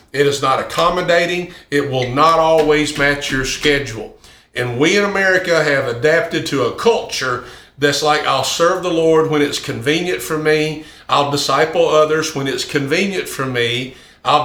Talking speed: 165 wpm